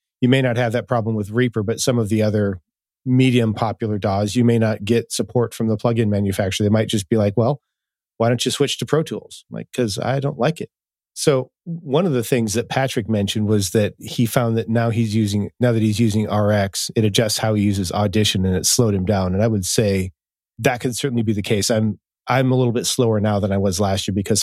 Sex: male